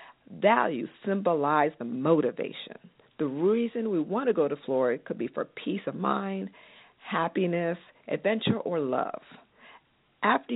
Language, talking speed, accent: English, 130 wpm, American